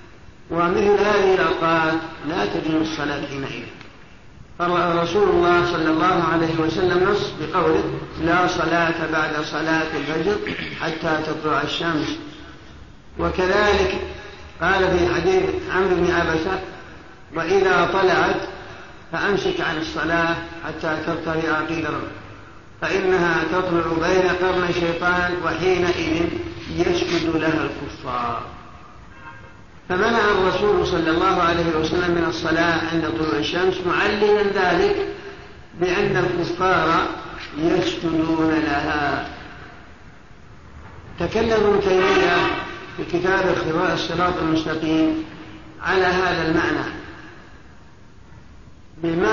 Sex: male